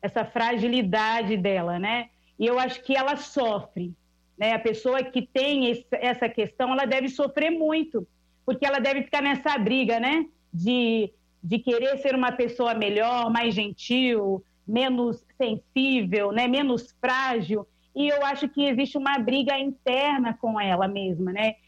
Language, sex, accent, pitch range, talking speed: Portuguese, female, Brazilian, 220-265 Hz, 150 wpm